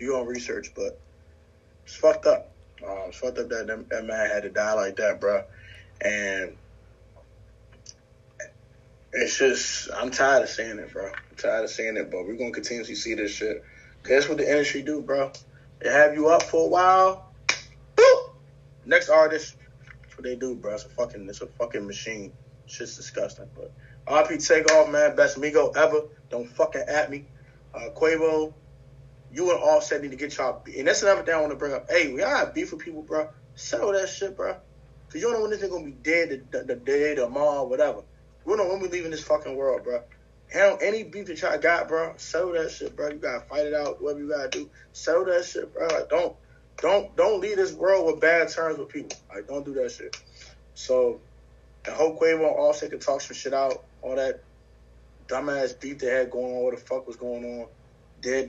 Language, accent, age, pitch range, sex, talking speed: English, American, 20-39, 130-215 Hz, male, 220 wpm